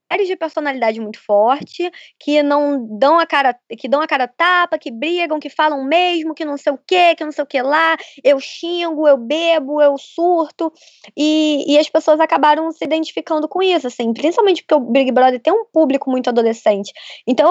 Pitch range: 240-315 Hz